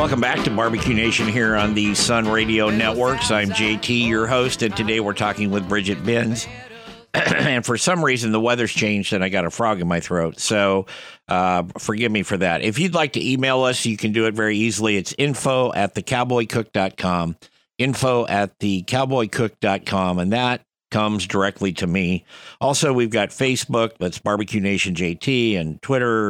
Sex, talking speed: male, 180 wpm